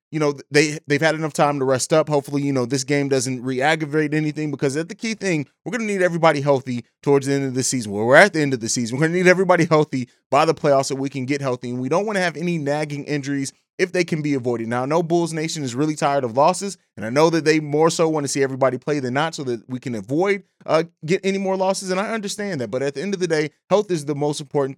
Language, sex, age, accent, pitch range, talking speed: English, male, 30-49, American, 135-170 Hz, 295 wpm